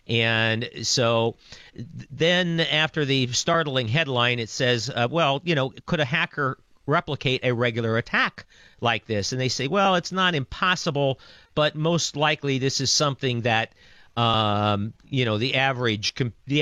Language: English